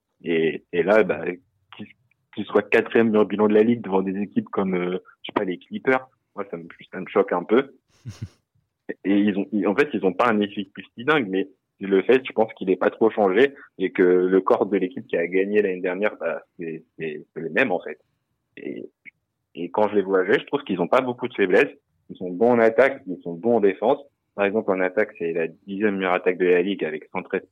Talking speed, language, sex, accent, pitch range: 245 wpm, French, male, French, 90-120 Hz